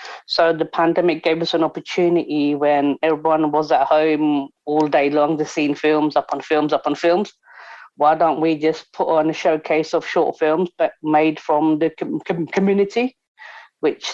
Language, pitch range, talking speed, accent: English, 145-160 Hz, 185 wpm, British